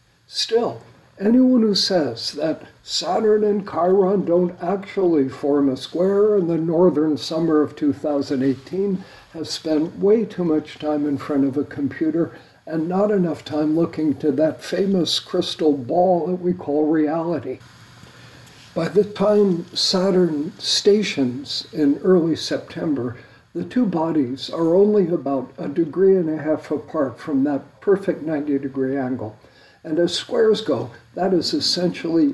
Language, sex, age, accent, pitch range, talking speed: English, male, 60-79, American, 140-180 Hz, 140 wpm